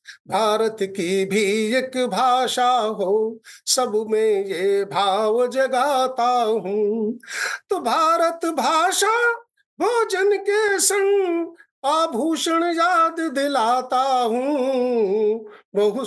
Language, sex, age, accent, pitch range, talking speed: Hindi, male, 50-69, native, 220-360 Hz, 85 wpm